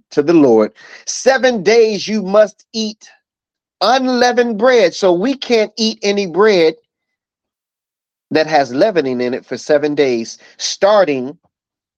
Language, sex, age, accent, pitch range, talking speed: English, male, 30-49, American, 150-210 Hz, 125 wpm